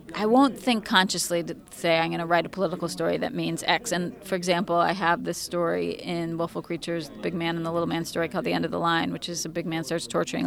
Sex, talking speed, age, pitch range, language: female, 270 wpm, 30-49, 170-200 Hz, English